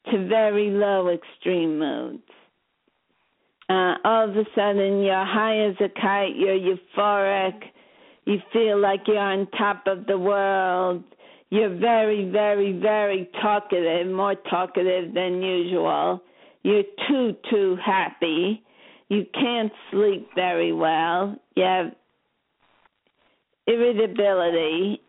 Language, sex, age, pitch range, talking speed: English, female, 50-69, 185-210 Hz, 110 wpm